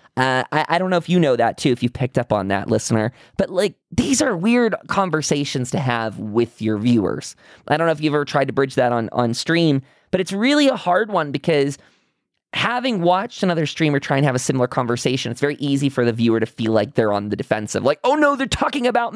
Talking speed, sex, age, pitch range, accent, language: 240 wpm, male, 20-39, 120-180 Hz, American, English